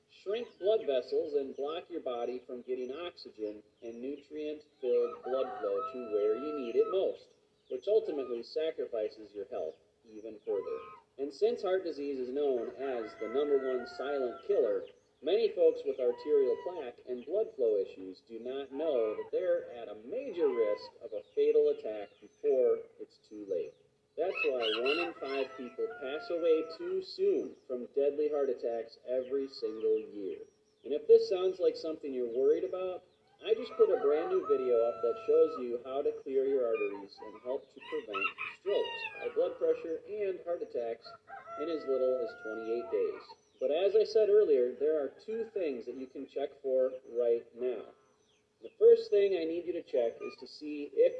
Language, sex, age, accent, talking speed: English, male, 40-59, American, 180 wpm